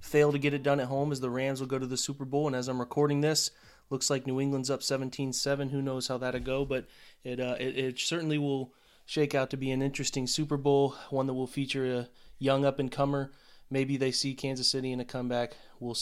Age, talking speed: 30-49, 235 wpm